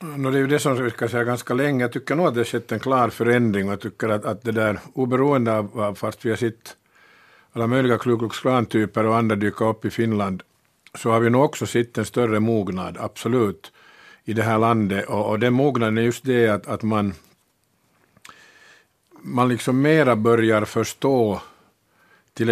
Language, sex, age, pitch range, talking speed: Finnish, male, 50-69, 110-125 Hz, 190 wpm